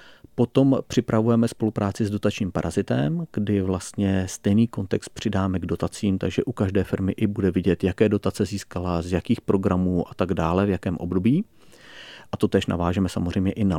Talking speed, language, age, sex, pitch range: 170 wpm, Czech, 40-59, male, 95-115 Hz